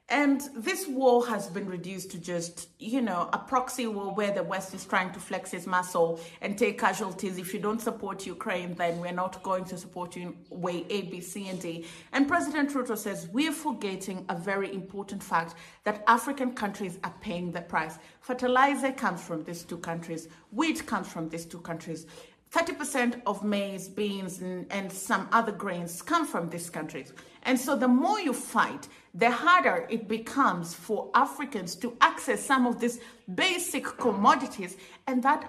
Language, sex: English, female